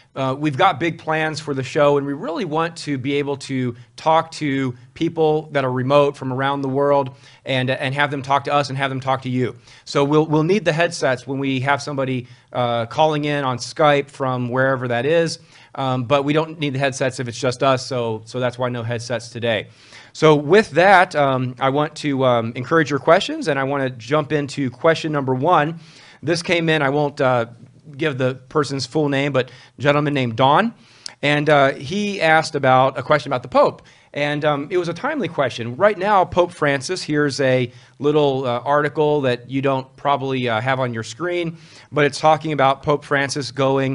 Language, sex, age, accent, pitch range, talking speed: English, male, 30-49, American, 125-150 Hz, 210 wpm